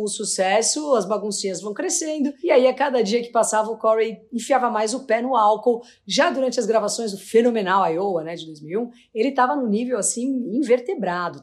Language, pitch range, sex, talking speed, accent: Portuguese, 200-255 Hz, female, 195 wpm, Brazilian